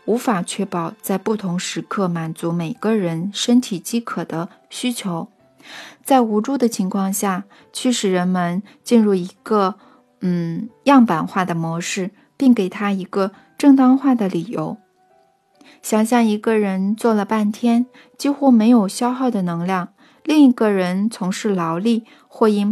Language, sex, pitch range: Chinese, female, 190-245 Hz